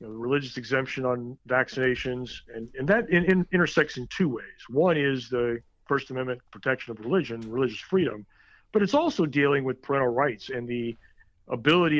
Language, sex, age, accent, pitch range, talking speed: English, male, 50-69, American, 120-150 Hz, 175 wpm